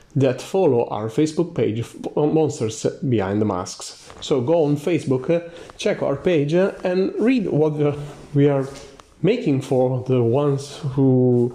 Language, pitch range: English, 135-170 Hz